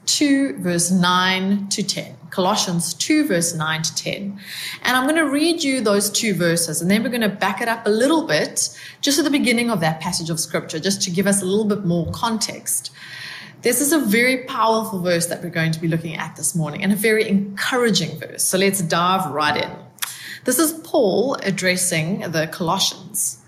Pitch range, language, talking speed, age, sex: 170-245 Hz, English, 205 wpm, 20-39, female